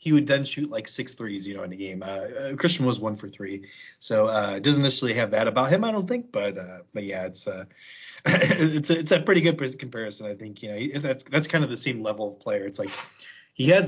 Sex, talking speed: male, 255 wpm